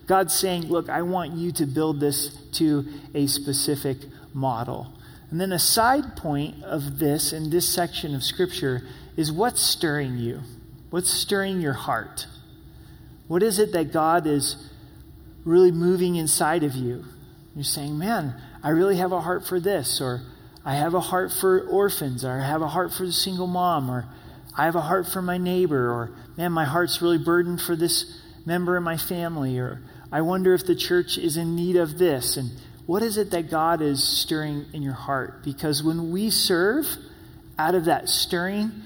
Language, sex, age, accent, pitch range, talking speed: English, male, 40-59, American, 140-180 Hz, 185 wpm